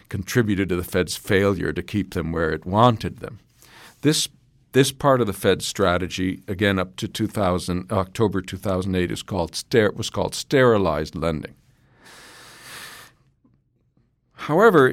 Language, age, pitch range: English, 50-69, 95-120 Hz